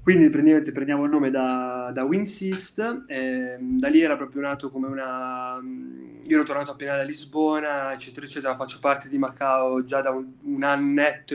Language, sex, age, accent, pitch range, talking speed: Italian, male, 20-39, native, 125-145 Hz, 165 wpm